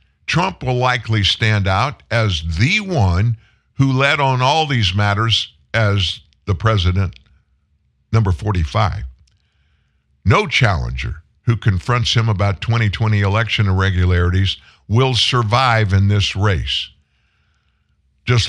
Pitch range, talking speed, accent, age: 95-125 Hz, 110 wpm, American, 50-69